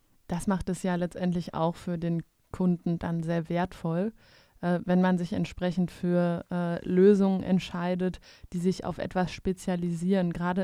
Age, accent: 20-39, German